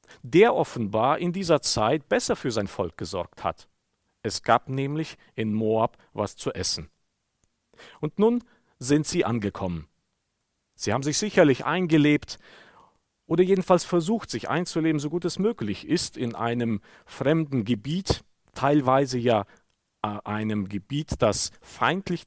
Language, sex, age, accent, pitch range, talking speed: German, male, 50-69, German, 105-150 Hz, 130 wpm